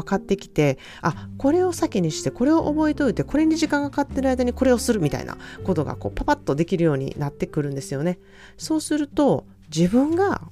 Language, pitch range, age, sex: Japanese, 145-225 Hz, 40-59, female